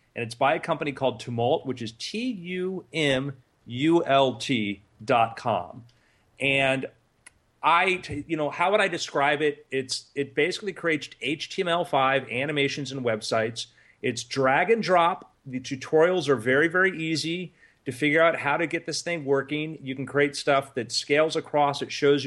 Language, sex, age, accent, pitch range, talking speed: English, male, 30-49, American, 130-165 Hz, 155 wpm